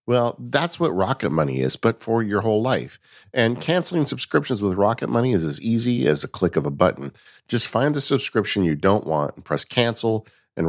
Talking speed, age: 210 wpm, 50-69